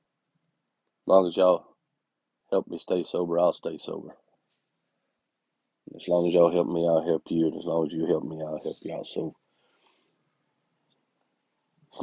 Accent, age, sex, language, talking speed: American, 50-69, male, English, 160 wpm